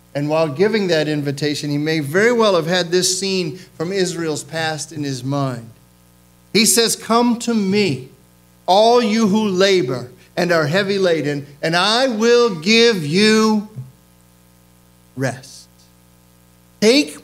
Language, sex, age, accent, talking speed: English, male, 50-69, American, 135 wpm